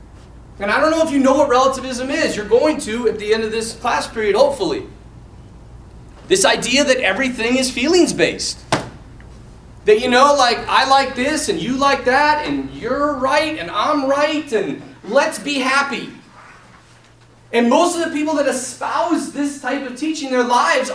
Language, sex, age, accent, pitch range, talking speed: English, male, 30-49, American, 220-300 Hz, 180 wpm